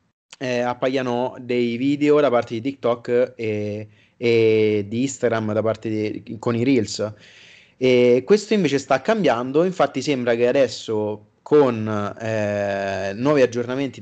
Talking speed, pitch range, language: 135 wpm, 115-140 Hz, Italian